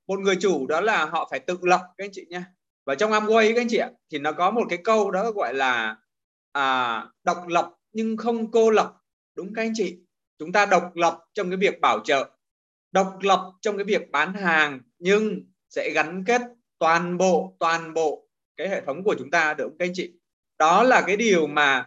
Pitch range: 170-225 Hz